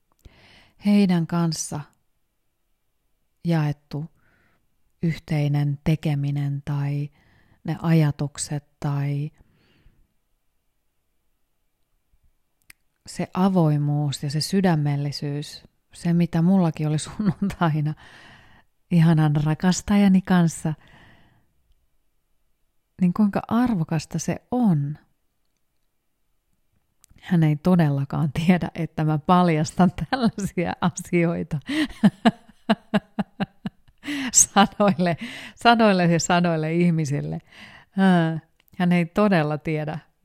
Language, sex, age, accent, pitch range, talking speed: Finnish, female, 30-49, native, 145-180 Hz, 65 wpm